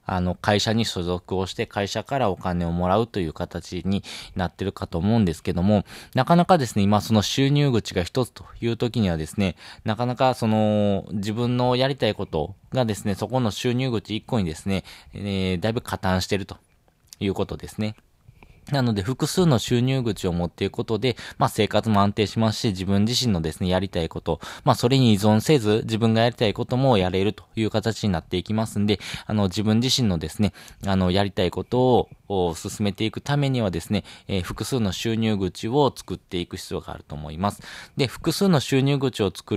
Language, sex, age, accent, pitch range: Japanese, male, 20-39, native, 90-120 Hz